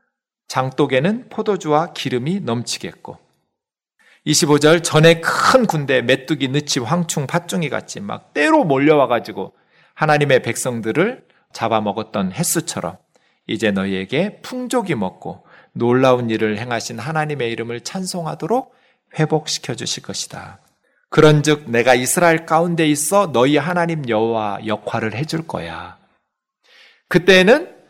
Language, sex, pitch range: Korean, male, 145-200 Hz